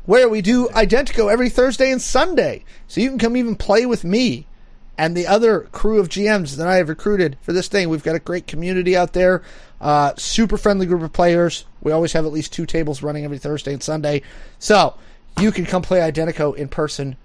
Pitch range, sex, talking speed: 145-200 Hz, male, 215 wpm